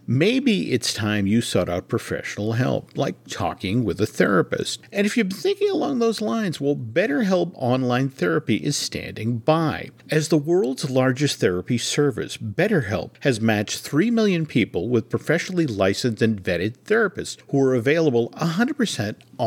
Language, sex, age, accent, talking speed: English, male, 50-69, American, 155 wpm